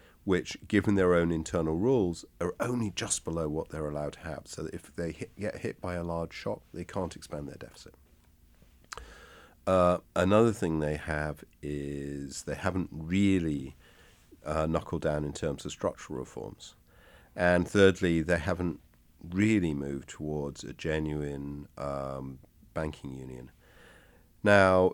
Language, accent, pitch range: English, British, 75-95 Hz